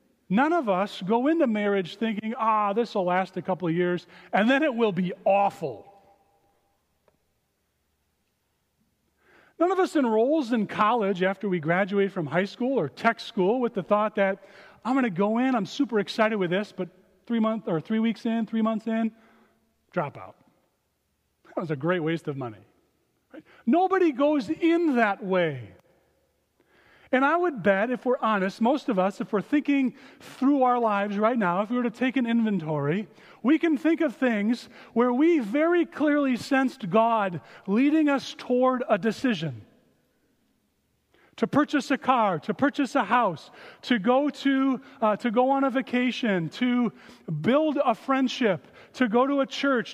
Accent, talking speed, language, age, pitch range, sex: American, 170 wpm, English, 40-59, 200-270 Hz, male